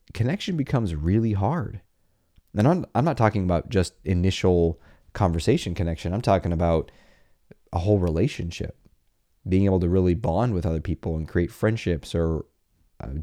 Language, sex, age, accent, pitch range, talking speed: English, male, 30-49, American, 85-110 Hz, 150 wpm